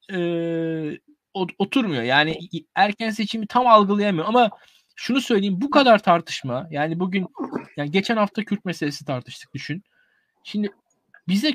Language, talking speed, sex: Turkish, 125 wpm, male